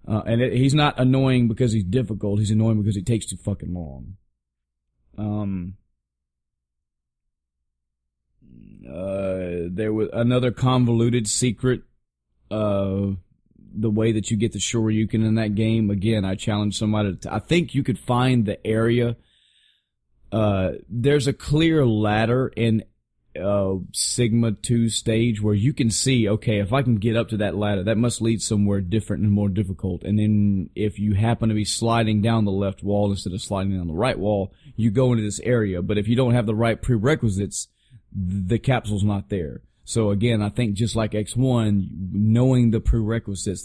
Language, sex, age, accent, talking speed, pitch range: English, male, 30-49, American, 175 wpm, 100-115 Hz